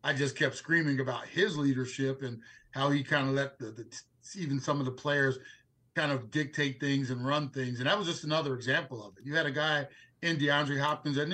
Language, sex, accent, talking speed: English, male, American, 230 wpm